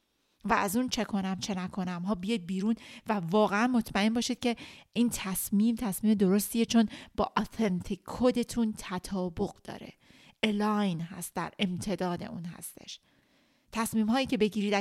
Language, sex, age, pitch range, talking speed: Persian, female, 30-49, 185-215 Hz, 140 wpm